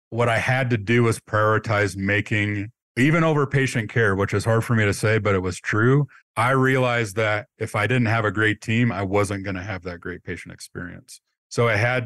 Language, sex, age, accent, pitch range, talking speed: English, male, 40-59, American, 95-115 Hz, 225 wpm